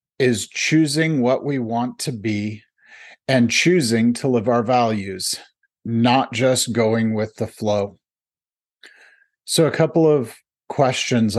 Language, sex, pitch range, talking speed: English, male, 110-130 Hz, 125 wpm